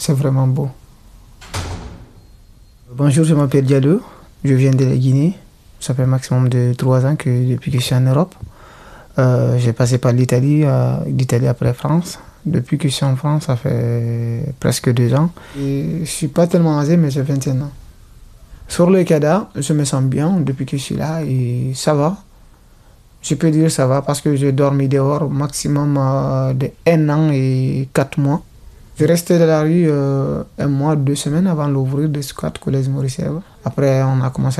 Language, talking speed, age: French, 185 wpm, 30-49